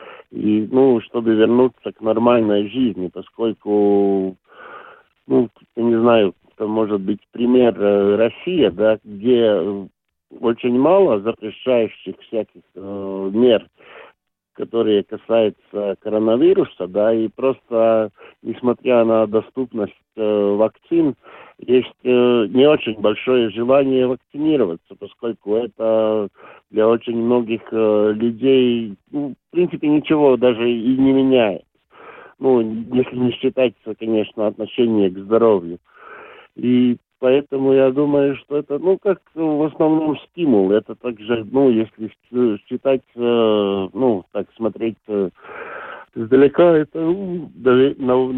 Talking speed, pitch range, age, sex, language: 110 wpm, 110-130 Hz, 50-69, male, Russian